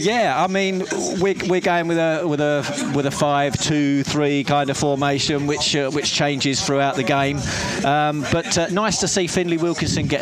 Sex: male